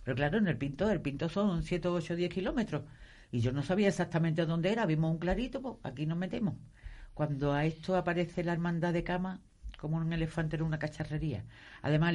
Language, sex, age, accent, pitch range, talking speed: Spanish, female, 50-69, Spanish, 145-190 Hz, 205 wpm